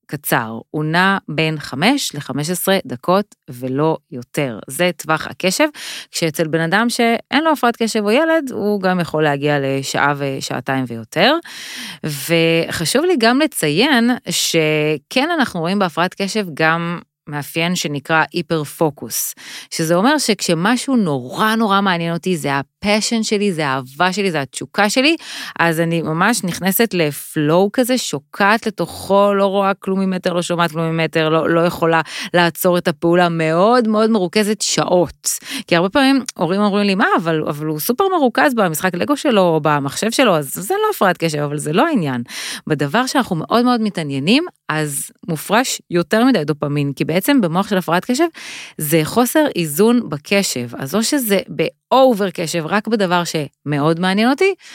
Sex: female